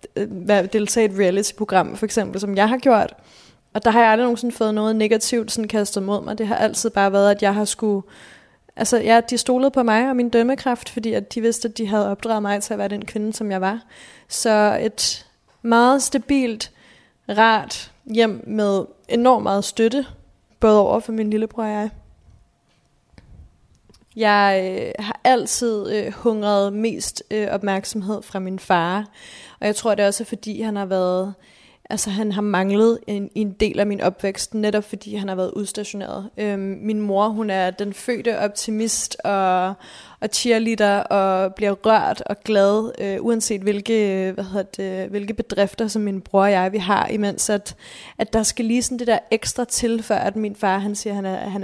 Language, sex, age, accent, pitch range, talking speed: Danish, female, 20-39, native, 200-225 Hz, 190 wpm